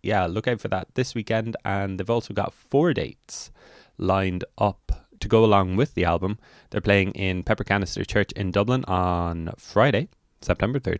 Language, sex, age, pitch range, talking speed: English, male, 20-39, 90-110 Hz, 175 wpm